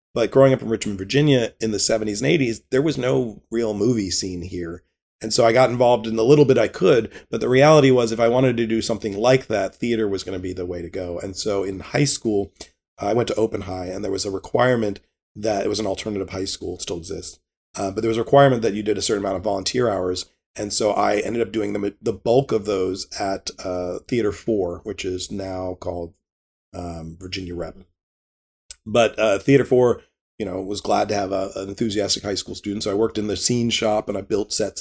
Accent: American